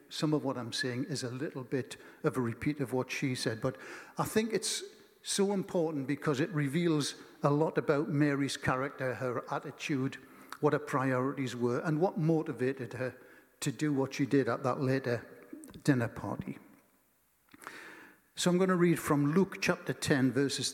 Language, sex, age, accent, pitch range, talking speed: English, male, 60-79, British, 130-155 Hz, 175 wpm